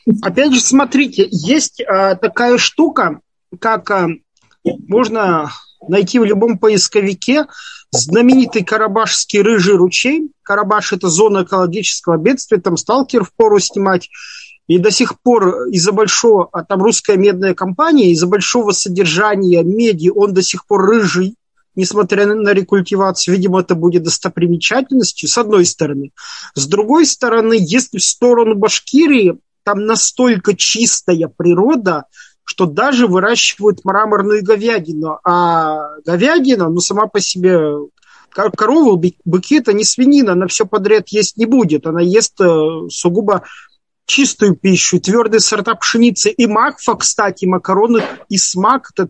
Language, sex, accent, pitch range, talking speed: Russian, male, native, 180-230 Hz, 125 wpm